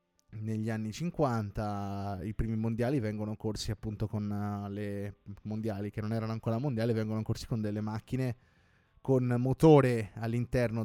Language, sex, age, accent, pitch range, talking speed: Italian, male, 20-39, native, 105-125 Hz, 140 wpm